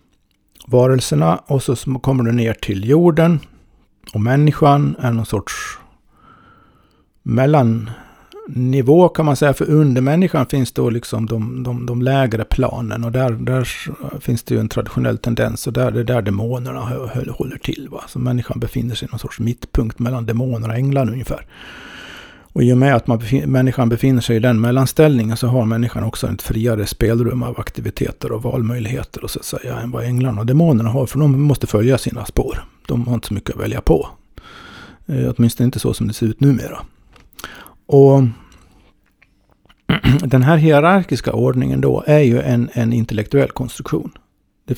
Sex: male